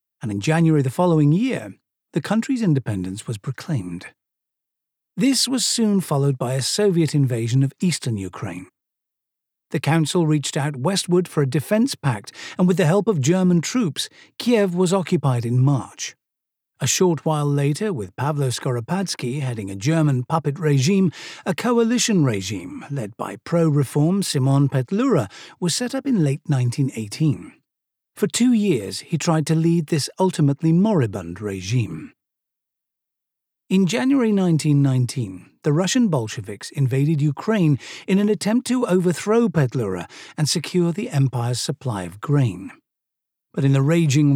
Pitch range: 135-185 Hz